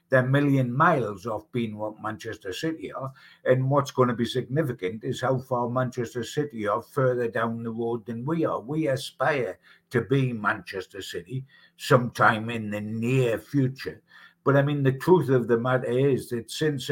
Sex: male